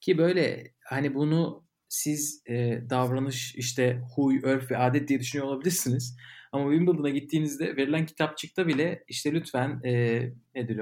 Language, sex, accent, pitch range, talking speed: Turkish, male, native, 120-145 Hz, 135 wpm